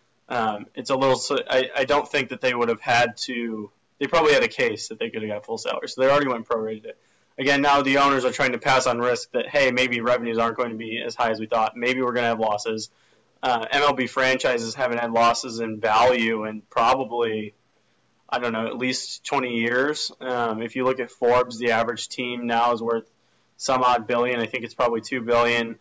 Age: 20-39